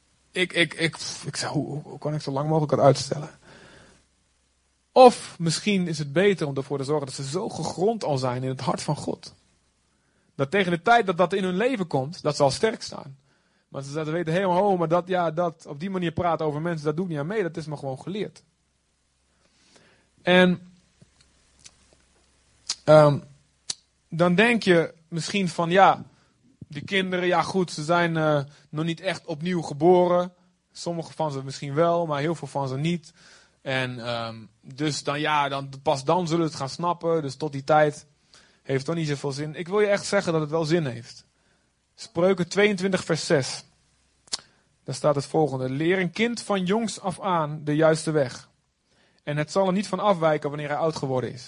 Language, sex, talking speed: Dutch, male, 195 wpm